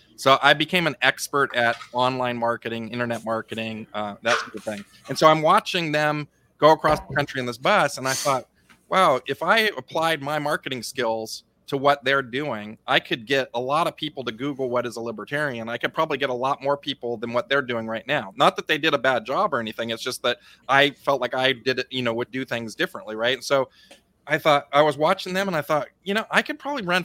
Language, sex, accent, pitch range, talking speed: English, male, American, 125-155 Hz, 245 wpm